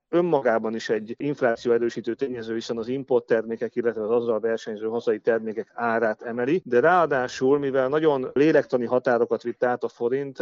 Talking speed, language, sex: 155 wpm, Hungarian, male